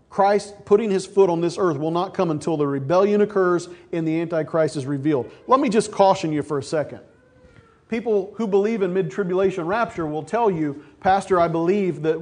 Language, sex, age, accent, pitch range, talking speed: English, male, 40-59, American, 165-195 Hz, 195 wpm